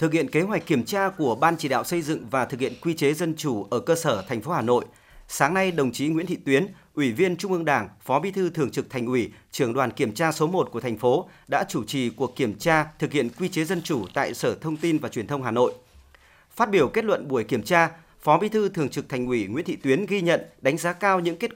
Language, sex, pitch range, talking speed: Vietnamese, male, 135-180 Hz, 275 wpm